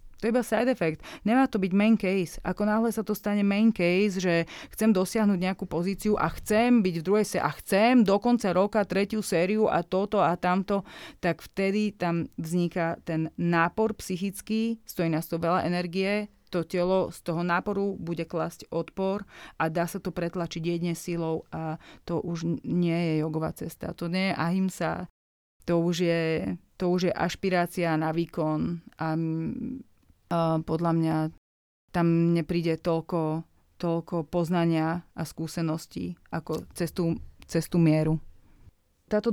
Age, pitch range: 30-49, 165-195 Hz